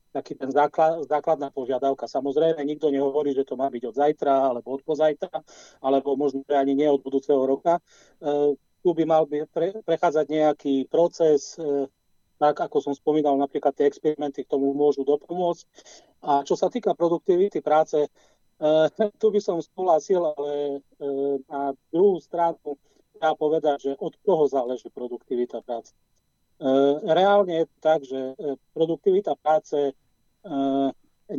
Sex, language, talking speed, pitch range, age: male, Slovak, 150 wpm, 140-160 Hz, 40-59